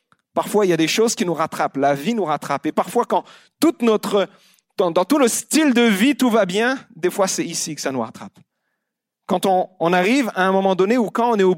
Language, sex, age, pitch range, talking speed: French, male, 40-59, 190-240 Hz, 255 wpm